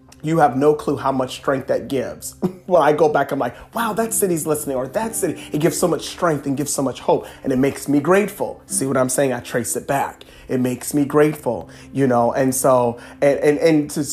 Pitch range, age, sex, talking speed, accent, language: 135-160 Hz, 30-49, male, 240 wpm, American, English